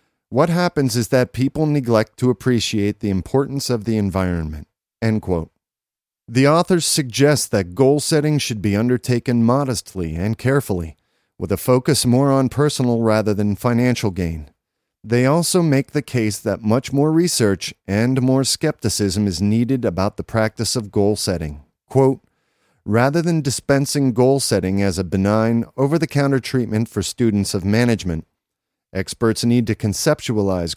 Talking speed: 140 wpm